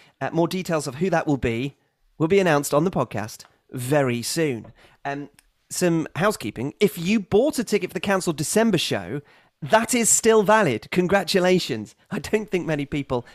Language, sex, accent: English, male, British